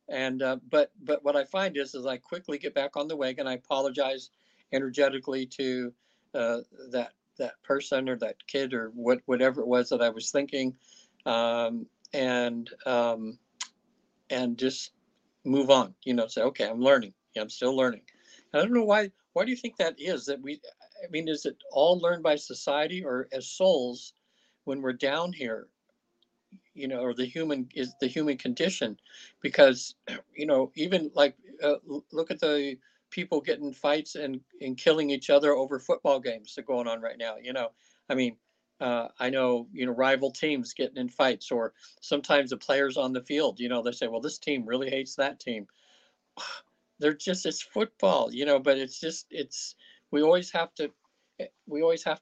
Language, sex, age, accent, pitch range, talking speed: English, male, 60-79, American, 125-150 Hz, 190 wpm